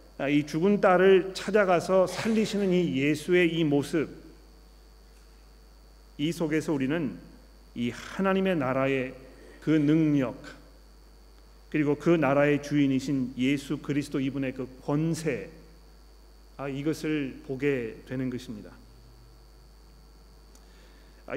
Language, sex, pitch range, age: Korean, male, 135-170 Hz, 40-59